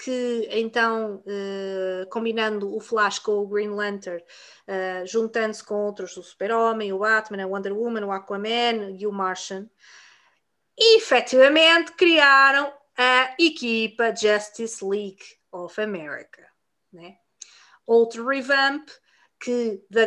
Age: 20-39